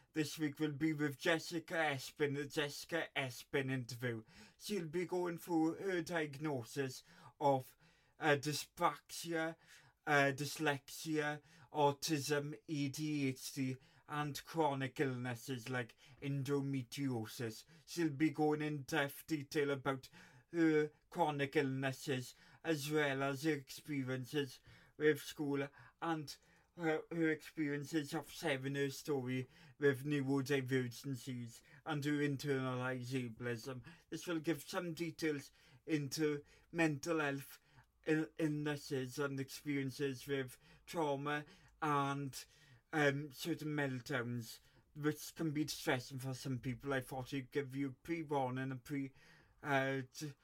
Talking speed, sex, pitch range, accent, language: 115 wpm, male, 135-155 Hz, British, English